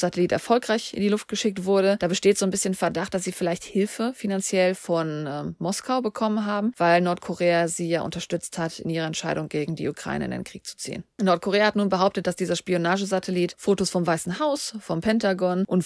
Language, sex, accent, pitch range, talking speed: German, female, German, 170-200 Hz, 205 wpm